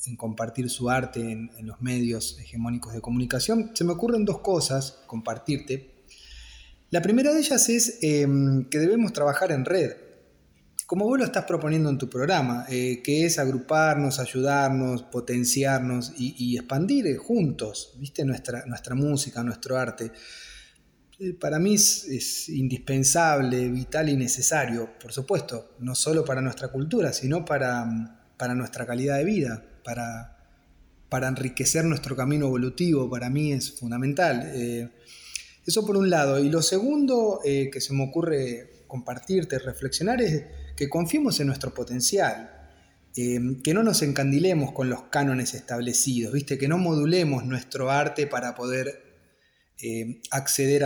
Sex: male